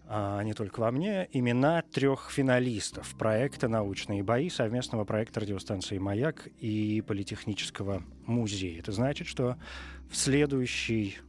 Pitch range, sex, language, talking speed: 100-135 Hz, male, Russian, 115 wpm